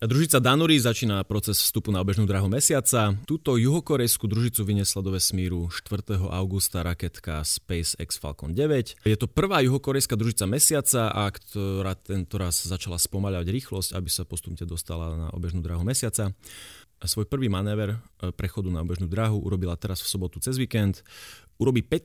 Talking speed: 150 wpm